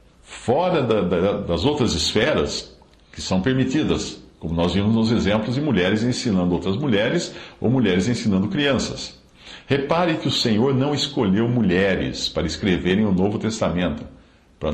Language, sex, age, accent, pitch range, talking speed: Portuguese, male, 60-79, Brazilian, 90-145 Hz, 140 wpm